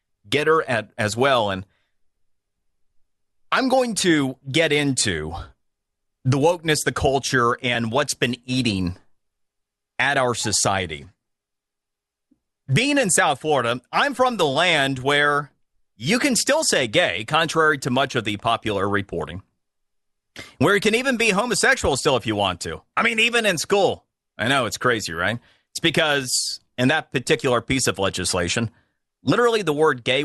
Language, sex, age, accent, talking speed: English, male, 30-49, American, 150 wpm